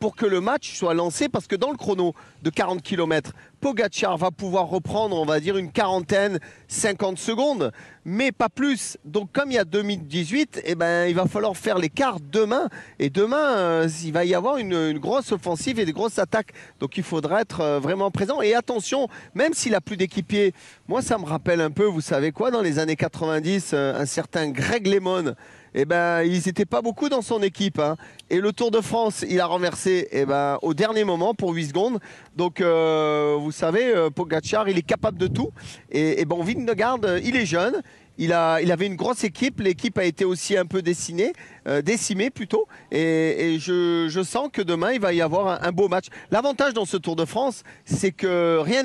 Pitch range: 165-220 Hz